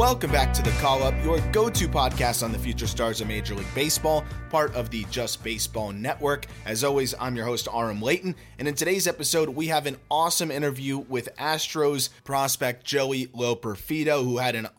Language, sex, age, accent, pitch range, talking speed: English, male, 30-49, American, 115-150 Hz, 190 wpm